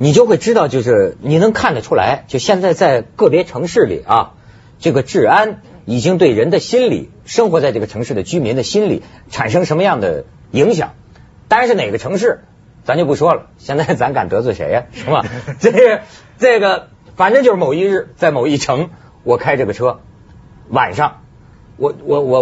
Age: 50-69